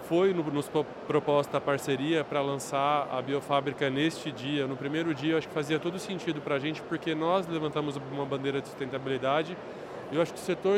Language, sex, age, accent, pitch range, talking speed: Portuguese, male, 20-39, Brazilian, 145-165 Hz, 200 wpm